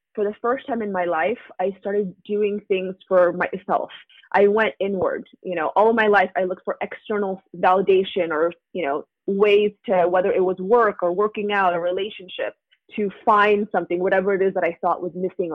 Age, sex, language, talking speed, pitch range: 20-39, female, English, 200 wpm, 185-220 Hz